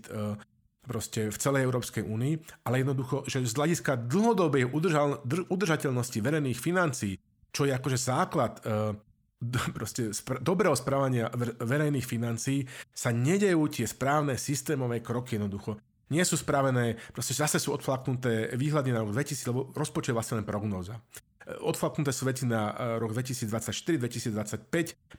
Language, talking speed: Slovak, 120 wpm